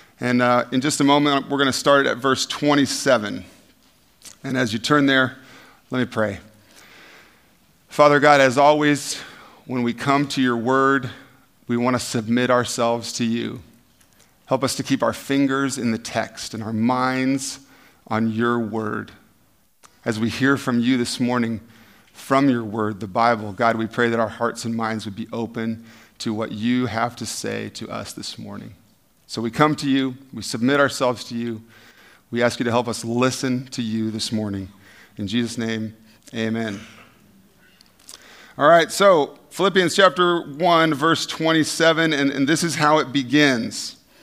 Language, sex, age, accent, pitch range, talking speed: English, male, 40-59, American, 115-145 Hz, 170 wpm